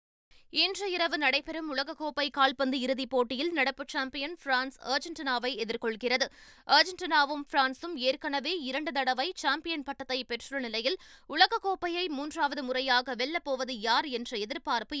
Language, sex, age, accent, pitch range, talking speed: Tamil, female, 20-39, native, 245-300 Hz, 110 wpm